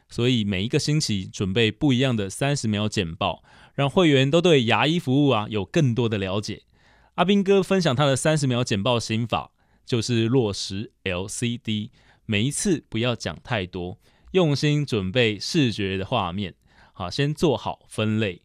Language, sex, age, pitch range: Chinese, male, 20-39, 105-145 Hz